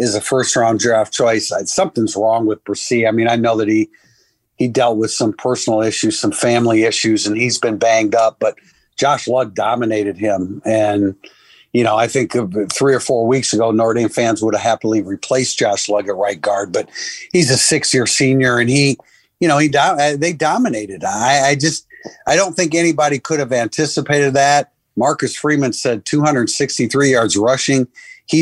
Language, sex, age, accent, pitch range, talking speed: English, male, 50-69, American, 110-140 Hz, 185 wpm